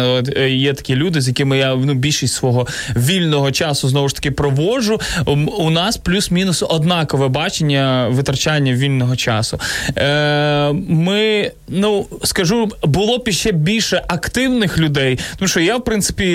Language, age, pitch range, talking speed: Ukrainian, 20-39, 140-175 Hz, 140 wpm